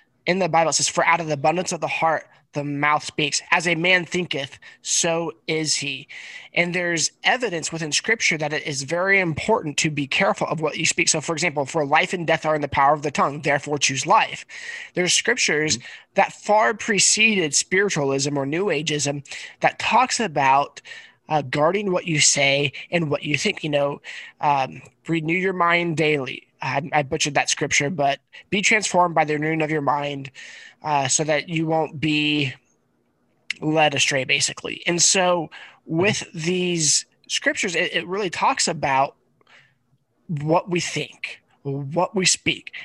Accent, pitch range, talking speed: American, 145-180 Hz, 175 wpm